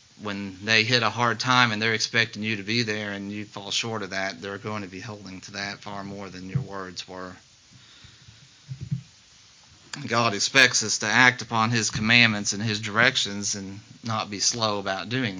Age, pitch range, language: 40-59, 105-130 Hz, English